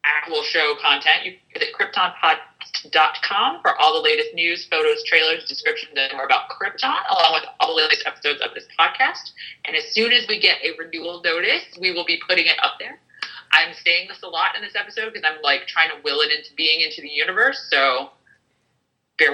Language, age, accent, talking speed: English, 30-49, American, 205 wpm